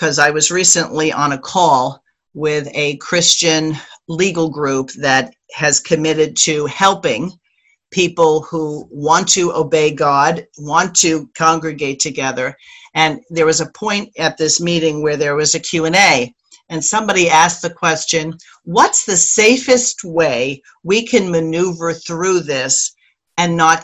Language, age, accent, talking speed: English, 50-69, American, 145 wpm